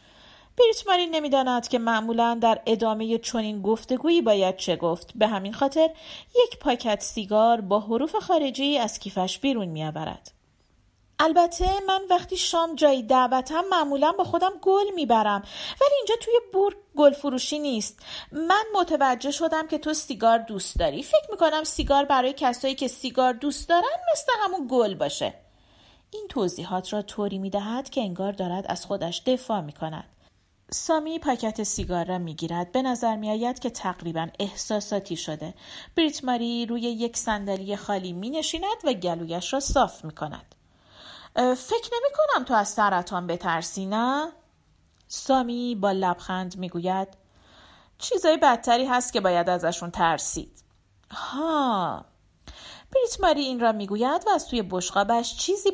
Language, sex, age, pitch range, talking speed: Persian, female, 40-59, 205-310 Hz, 145 wpm